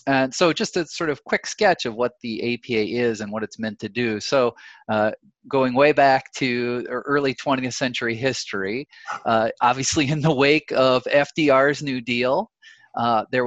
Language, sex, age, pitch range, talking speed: English, male, 30-49, 115-145 Hz, 180 wpm